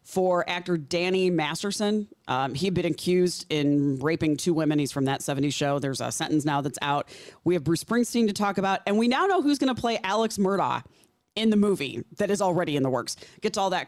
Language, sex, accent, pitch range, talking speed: English, female, American, 155-200 Hz, 220 wpm